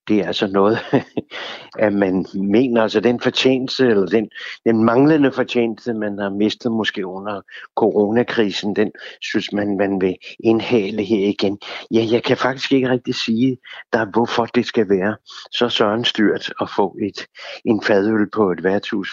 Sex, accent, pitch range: male, native, 100-115 Hz